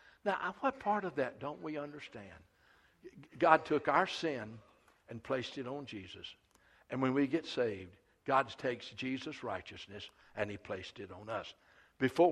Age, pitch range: 60-79, 130-185 Hz